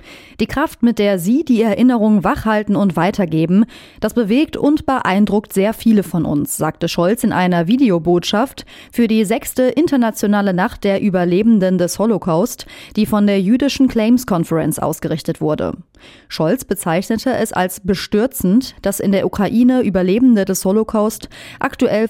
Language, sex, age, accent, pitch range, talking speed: German, female, 30-49, German, 185-235 Hz, 145 wpm